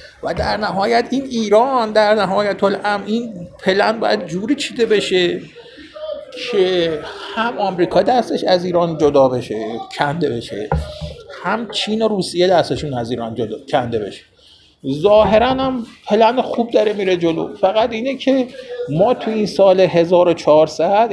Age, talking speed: 50-69, 140 wpm